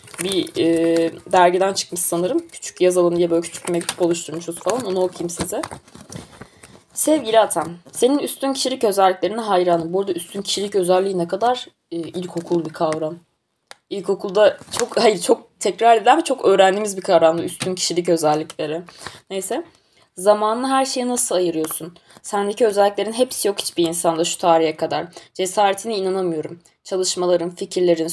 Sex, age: female, 20-39